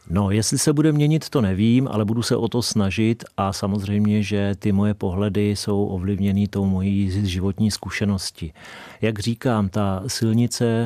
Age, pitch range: 40-59, 100-110 Hz